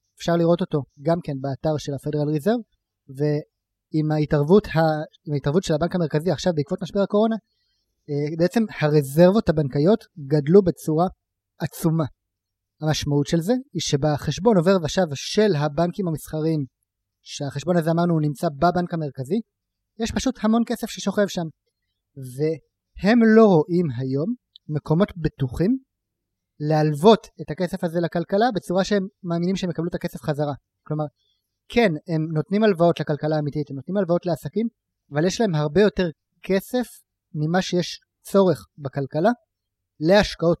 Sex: male